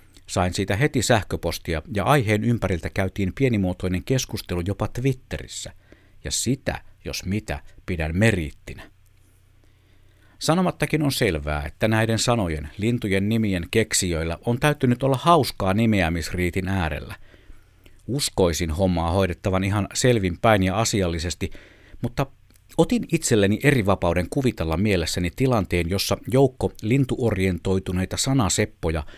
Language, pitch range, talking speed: Finnish, 95-120 Hz, 105 wpm